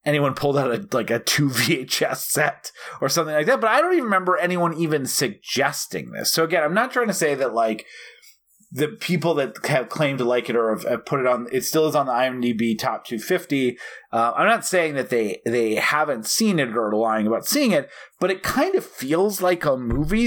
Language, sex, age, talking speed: English, male, 30-49, 225 wpm